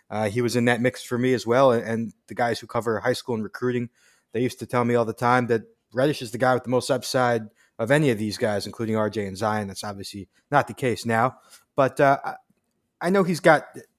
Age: 20-39